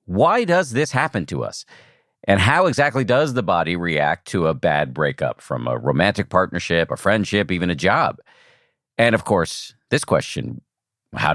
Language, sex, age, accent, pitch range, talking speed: English, male, 50-69, American, 90-115 Hz, 170 wpm